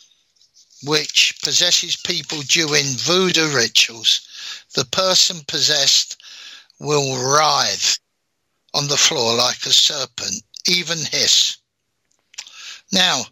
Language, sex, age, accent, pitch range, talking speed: English, male, 60-79, British, 145-190 Hz, 95 wpm